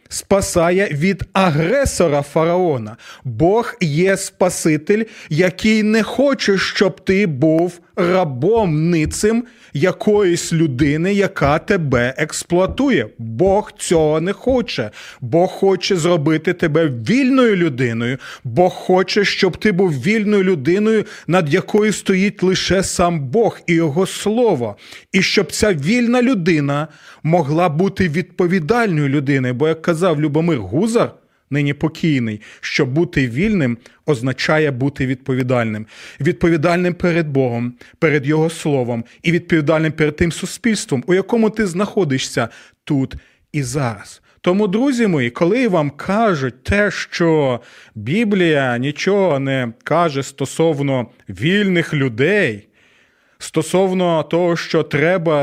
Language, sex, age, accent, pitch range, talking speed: Ukrainian, male, 30-49, native, 145-195 Hz, 115 wpm